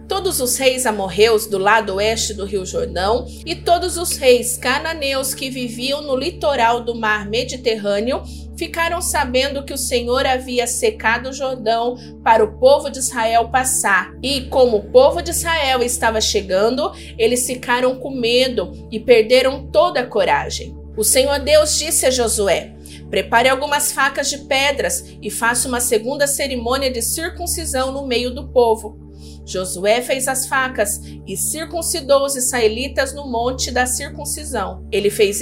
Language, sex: Portuguese, female